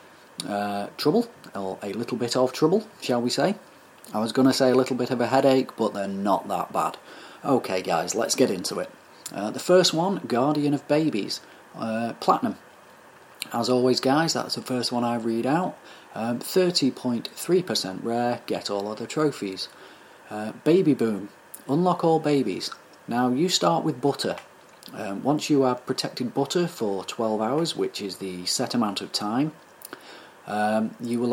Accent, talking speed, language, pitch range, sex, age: British, 170 wpm, English, 105-145 Hz, male, 30-49